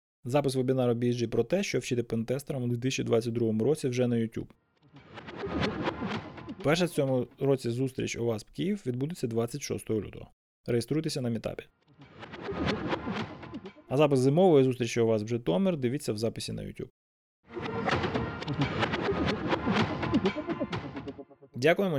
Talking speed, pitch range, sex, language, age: 115 wpm, 115-140 Hz, male, Ukrainian, 20-39